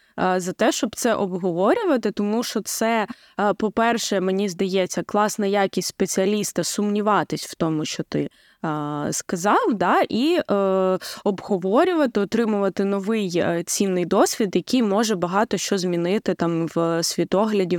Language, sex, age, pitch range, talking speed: Ukrainian, female, 20-39, 185-250 Hz, 120 wpm